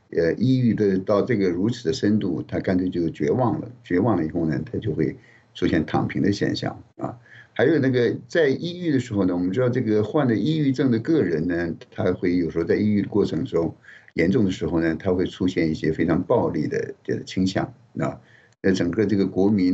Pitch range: 85-100 Hz